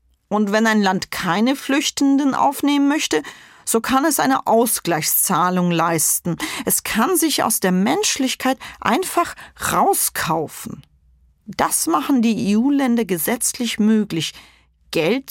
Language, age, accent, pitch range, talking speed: German, 40-59, German, 190-260 Hz, 115 wpm